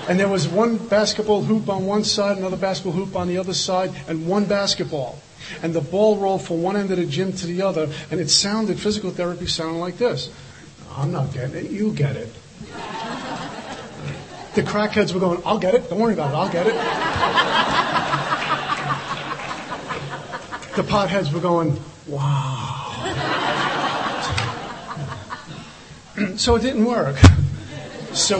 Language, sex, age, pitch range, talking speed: English, male, 40-59, 155-190 Hz, 150 wpm